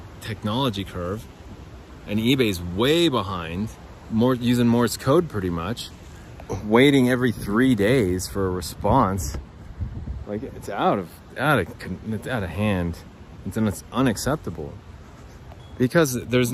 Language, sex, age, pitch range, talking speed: English, male, 30-49, 95-125 Hz, 125 wpm